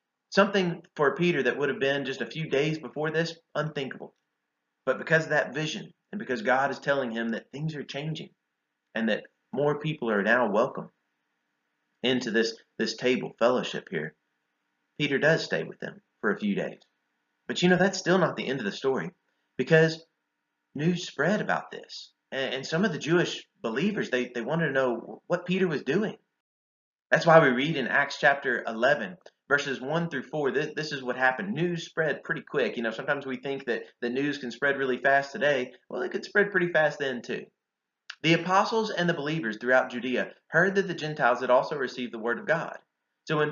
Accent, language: American, English